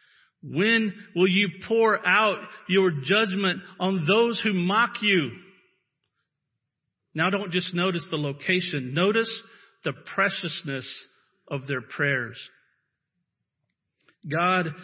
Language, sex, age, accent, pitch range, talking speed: English, male, 50-69, American, 155-205 Hz, 100 wpm